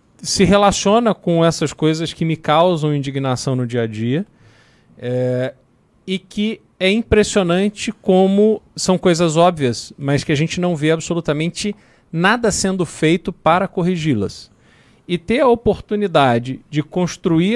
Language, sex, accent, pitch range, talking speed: Portuguese, male, Brazilian, 140-180 Hz, 135 wpm